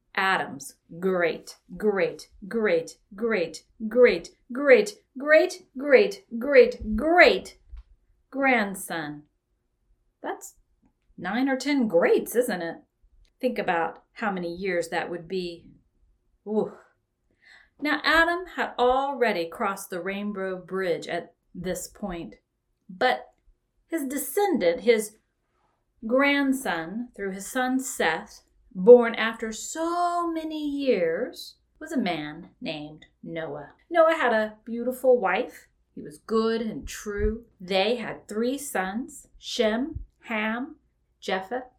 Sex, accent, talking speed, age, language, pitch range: female, American, 110 wpm, 40-59, English, 190-275 Hz